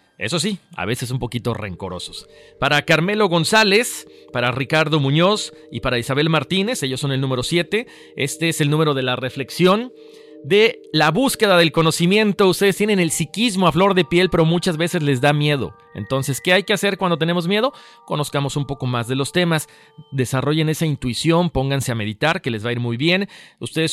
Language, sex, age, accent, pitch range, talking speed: Spanish, male, 40-59, Mexican, 125-175 Hz, 195 wpm